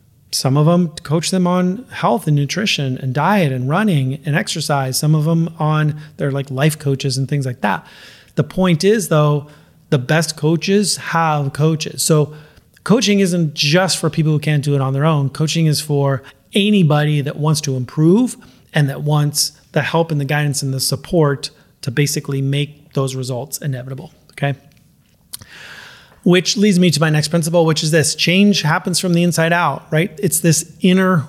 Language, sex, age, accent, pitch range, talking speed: English, male, 30-49, American, 140-170 Hz, 180 wpm